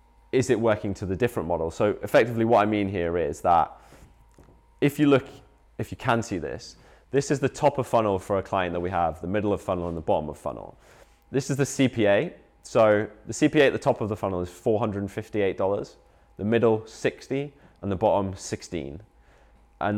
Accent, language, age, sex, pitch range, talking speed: British, English, 20-39, male, 90-115 Hz, 200 wpm